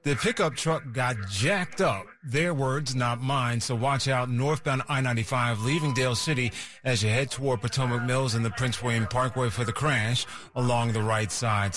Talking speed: 185 wpm